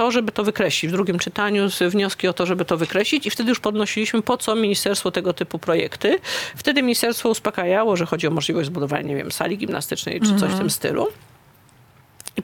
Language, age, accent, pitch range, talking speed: Polish, 40-59, native, 175-235 Hz, 200 wpm